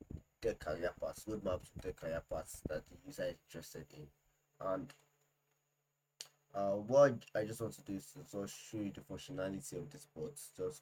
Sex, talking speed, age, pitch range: male, 175 wpm, 20-39, 95-145 Hz